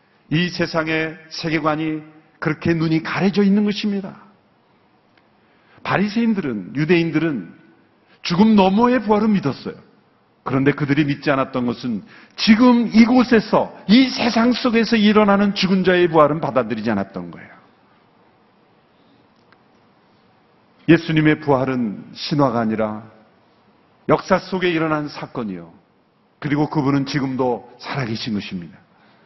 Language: Korean